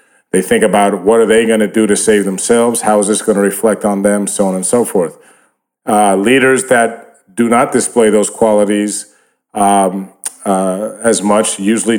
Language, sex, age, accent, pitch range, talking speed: English, male, 40-59, American, 100-115 Hz, 190 wpm